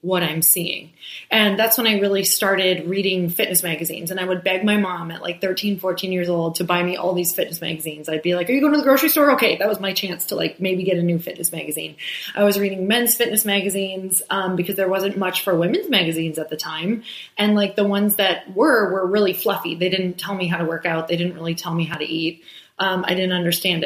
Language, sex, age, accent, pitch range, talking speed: English, female, 20-39, American, 175-205 Hz, 250 wpm